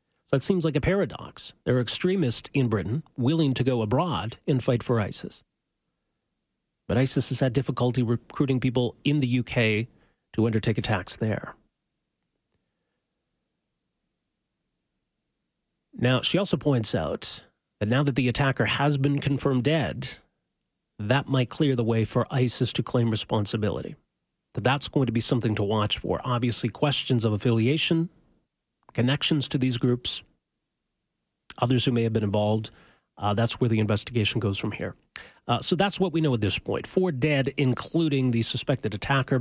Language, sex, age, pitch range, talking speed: English, male, 40-59, 115-140 Hz, 155 wpm